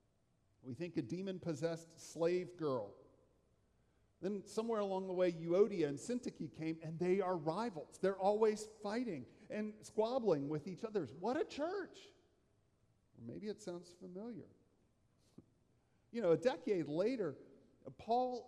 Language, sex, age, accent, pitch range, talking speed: English, male, 50-69, American, 125-170 Hz, 130 wpm